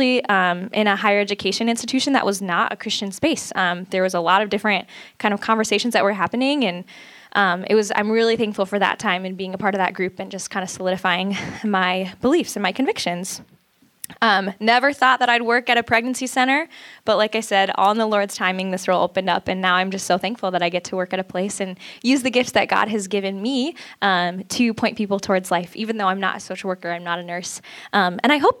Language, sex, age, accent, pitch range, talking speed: English, female, 10-29, American, 190-240 Hz, 250 wpm